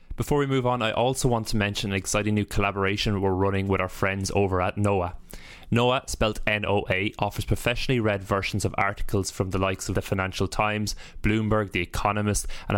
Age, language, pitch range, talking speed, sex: 20-39, English, 95-110 Hz, 195 wpm, male